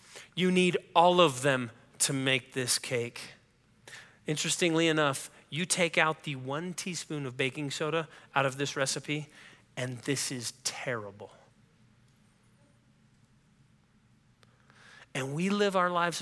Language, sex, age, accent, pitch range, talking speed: English, male, 30-49, American, 135-180 Hz, 120 wpm